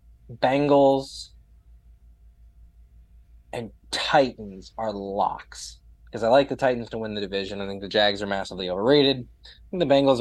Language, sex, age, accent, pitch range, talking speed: English, male, 20-39, American, 90-140 Hz, 145 wpm